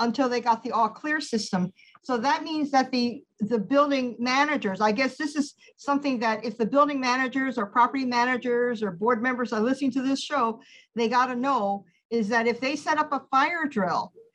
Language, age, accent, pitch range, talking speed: English, 50-69, American, 225-280 Hz, 200 wpm